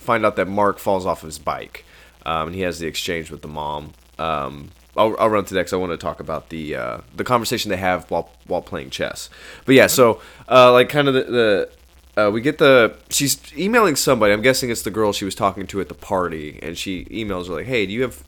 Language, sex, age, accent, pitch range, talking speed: English, male, 20-39, American, 80-110 Hz, 245 wpm